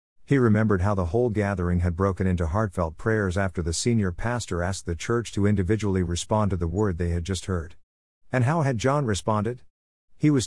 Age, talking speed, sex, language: 50-69, 200 wpm, male, English